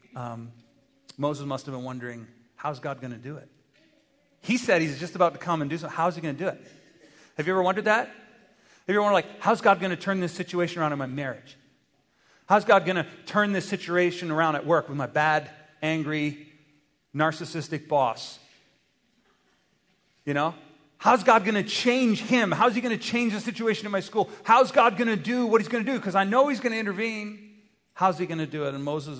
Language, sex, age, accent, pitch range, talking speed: English, male, 40-59, American, 140-200 Hz, 220 wpm